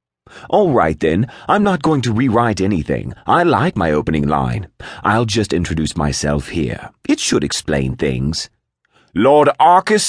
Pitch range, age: 80-135 Hz, 30-49